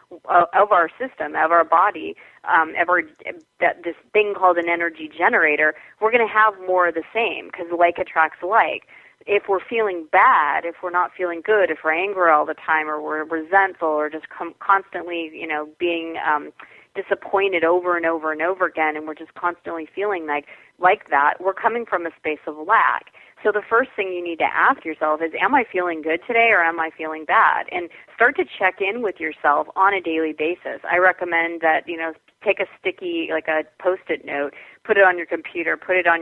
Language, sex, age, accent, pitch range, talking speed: English, female, 30-49, American, 160-190 Hz, 210 wpm